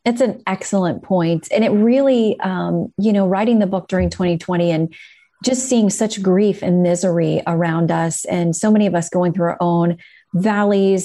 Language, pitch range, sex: English, 175-220 Hz, female